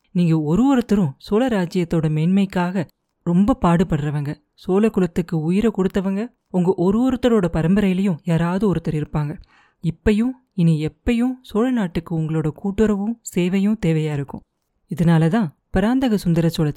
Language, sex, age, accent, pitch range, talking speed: Tamil, female, 30-49, native, 160-210 Hz, 120 wpm